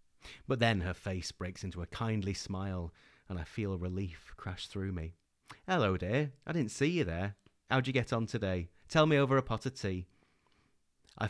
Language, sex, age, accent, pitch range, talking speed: English, male, 30-49, British, 90-110 Hz, 190 wpm